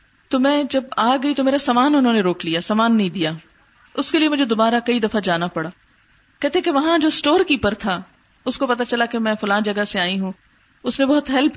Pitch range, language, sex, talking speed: 190-250 Hz, Urdu, female, 230 wpm